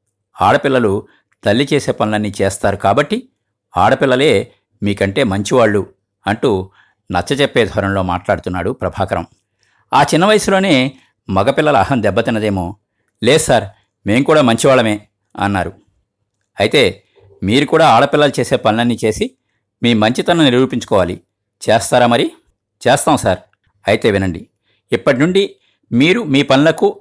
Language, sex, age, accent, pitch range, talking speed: Telugu, male, 50-69, native, 105-155 Hz, 105 wpm